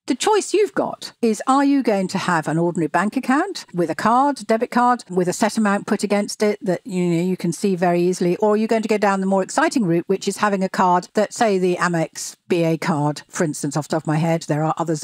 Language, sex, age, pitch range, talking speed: English, female, 60-79, 175-240 Hz, 265 wpm